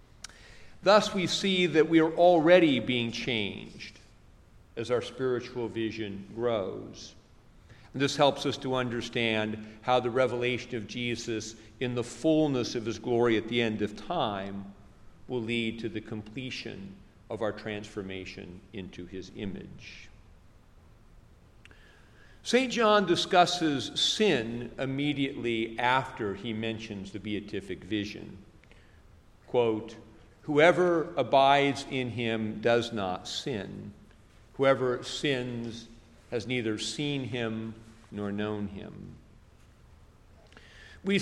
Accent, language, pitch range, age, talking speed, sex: American, English, 105-130 Hz, 50-69, 110 wpm, male